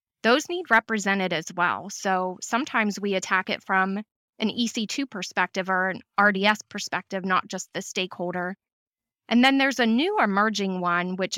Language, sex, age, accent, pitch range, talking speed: English, female, 20-39, American, 185-220 Hz, 160 wpm